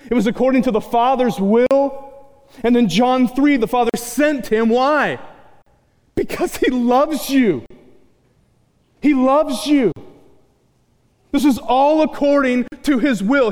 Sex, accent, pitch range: male, American, 195-280 Hz